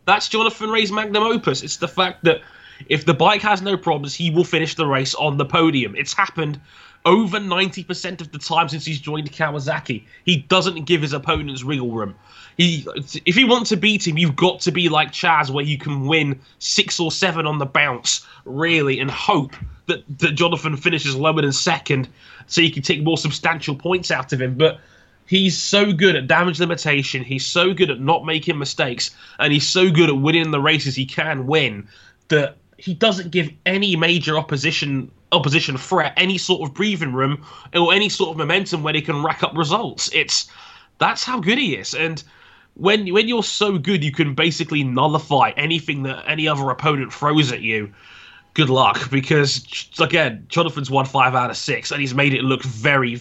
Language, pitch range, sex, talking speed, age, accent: English, 140-180 Hz, male, 195 wpm, 20-39, British